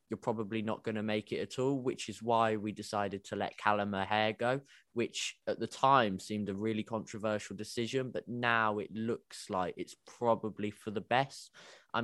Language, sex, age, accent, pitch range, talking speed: English, male, 20-39, British, 105-125 Hz, 195 wpm